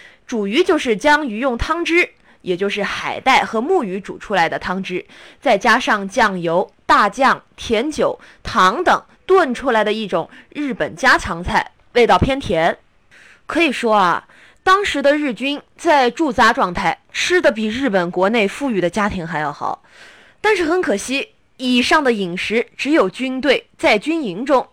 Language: Chinese